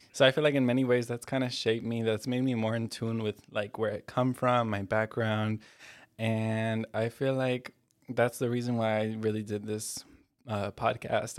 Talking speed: 210 wpm